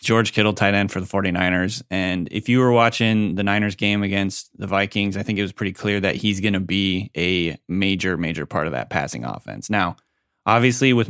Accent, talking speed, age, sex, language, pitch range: American, 215 wpm, 20-39, male, English, 95-110 Hz